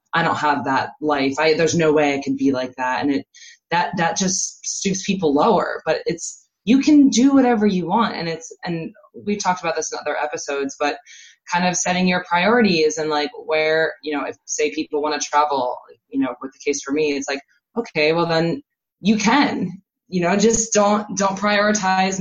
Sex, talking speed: female, 210 wpm